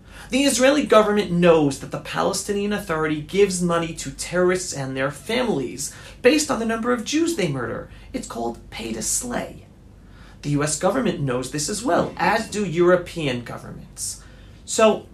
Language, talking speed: English, 160 wpm